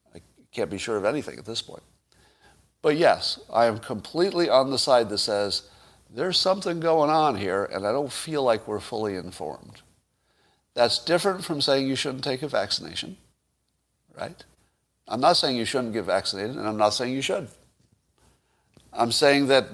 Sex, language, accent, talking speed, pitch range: male, English, American, 175 wpm, 105-155 Hz